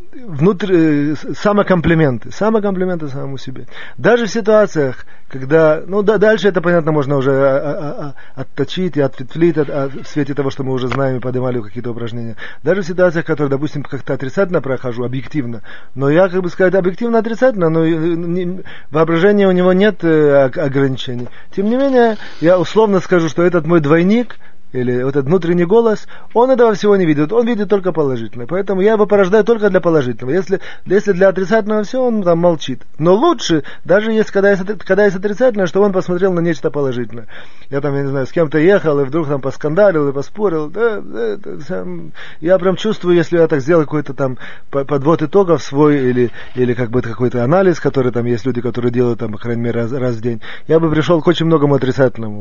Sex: male